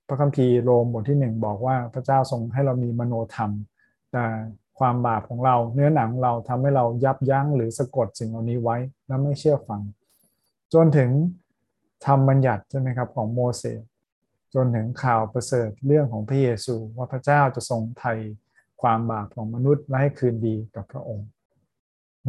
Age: 20-39